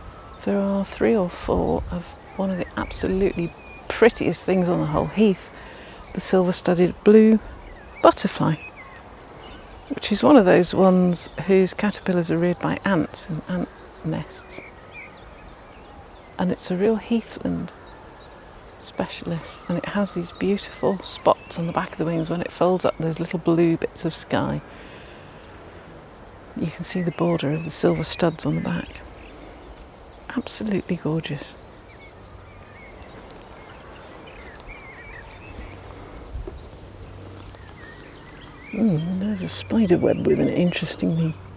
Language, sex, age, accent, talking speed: English, female, 40-59, British, 125 wpm